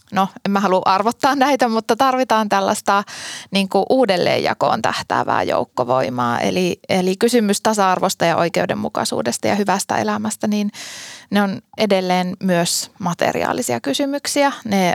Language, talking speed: Finnish, 120 wpm